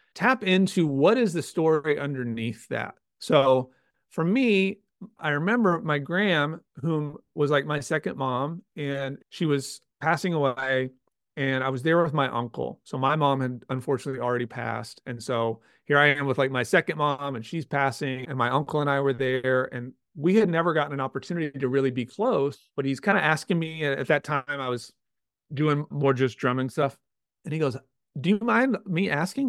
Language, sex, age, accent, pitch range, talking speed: English, male, 40-59, American, 130-165 Hz, 195 wpm